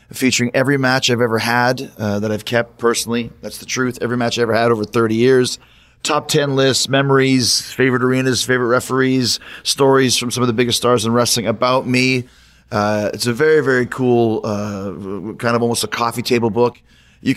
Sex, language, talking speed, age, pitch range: male, English, 195 wpm, 30-49, 115-135 Hz